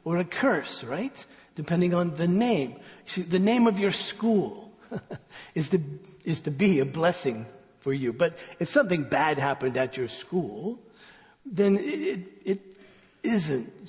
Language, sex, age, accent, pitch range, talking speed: English, male, 60-79, American, 135-185 Hz, 145 wpm